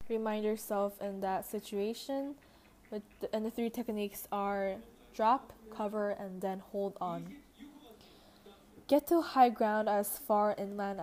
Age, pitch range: 10-29, 200-230 Hz